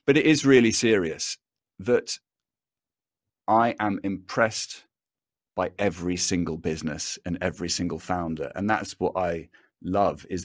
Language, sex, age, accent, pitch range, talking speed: English, male, 40-59, British, 90-115 Hz, 130 wpm